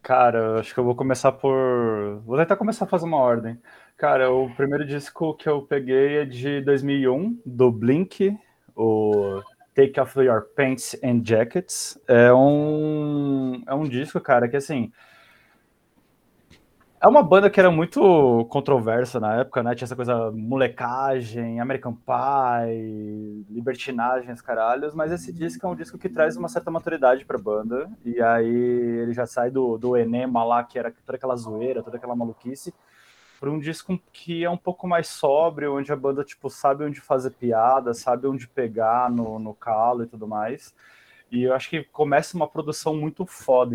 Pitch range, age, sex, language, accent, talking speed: 115-145 Hz, 20-39, male, Portuguese, Brazilian, 170 wpm